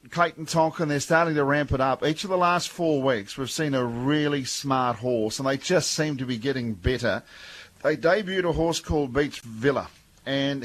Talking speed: 210 wpm